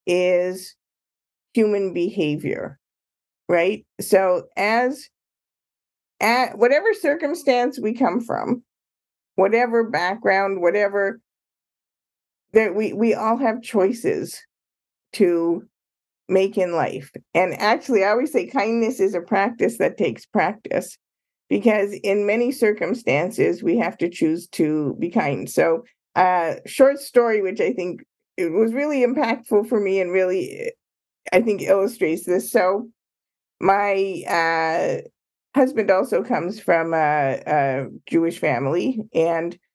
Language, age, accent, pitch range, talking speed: English, 50-69, American, 170-225 Hz, 120 wpm